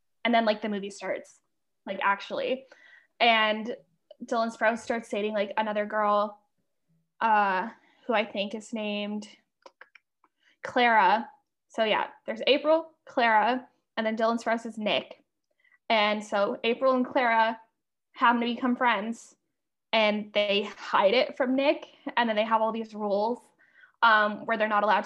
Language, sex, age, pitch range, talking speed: English, female, 10-29, 215-260 Hz, 145 wpm